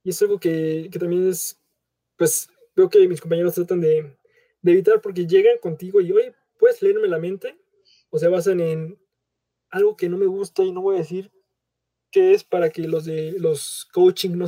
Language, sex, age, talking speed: Spanish, male, 20-39, 200 wpm